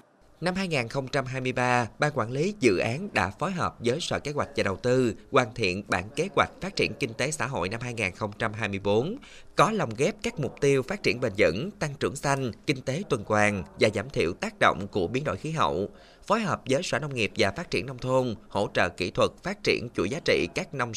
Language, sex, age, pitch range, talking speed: Vietnamese, male, 20-39, 105-140 Hz, 225 wpm